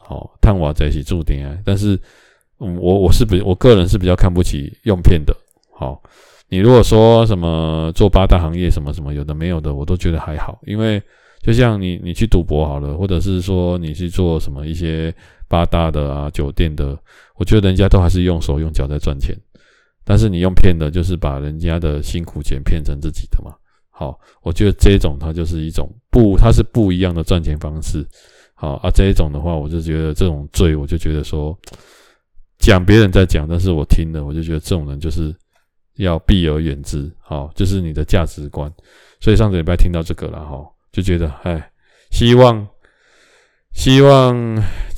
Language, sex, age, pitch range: Chinese, male, 20-39, 75-100 Hz